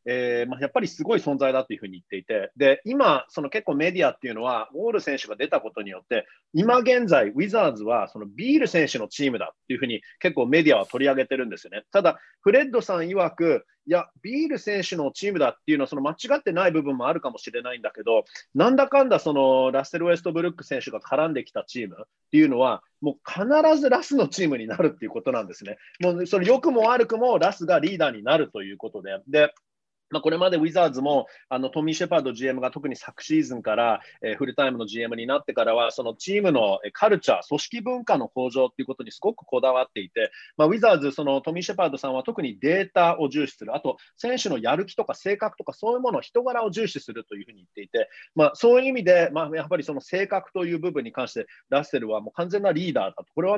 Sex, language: male, Japanese